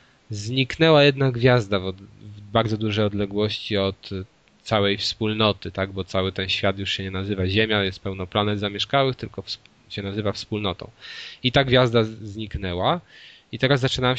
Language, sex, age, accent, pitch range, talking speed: Polish, male, 20-39, native, 105-125 Hz, 150 wpm